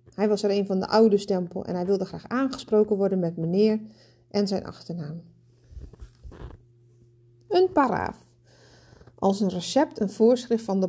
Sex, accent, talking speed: female, Dutch, 155 wpm